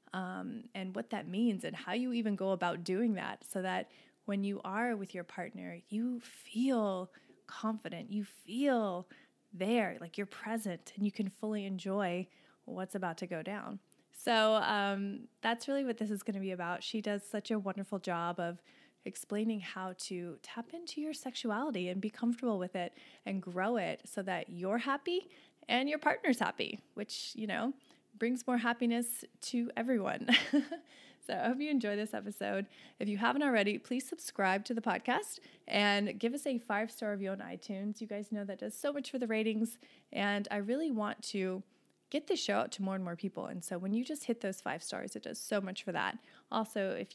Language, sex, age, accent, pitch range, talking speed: English, female, 20-39, American, 195-245 Hz, 195 wpm